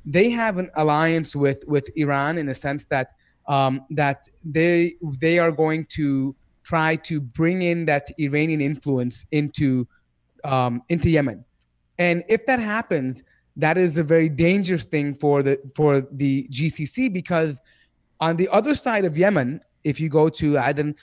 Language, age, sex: English, 30-49, male